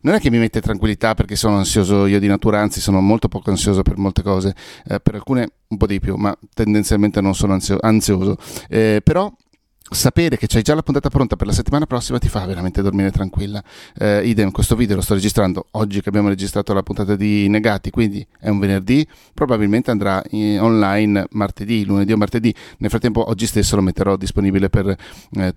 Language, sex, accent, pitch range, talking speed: Italian, male, native, 100-115 Hz, 200 wpm